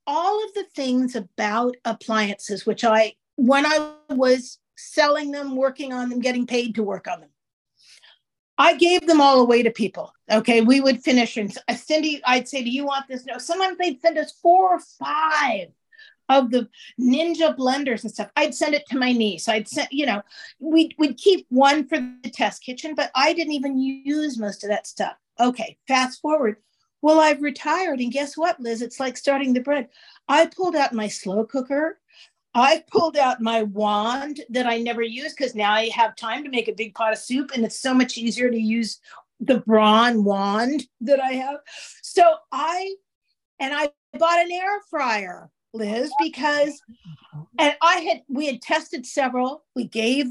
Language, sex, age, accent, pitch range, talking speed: English, female, 50-69, American, 230-305 Hz, 185 wpm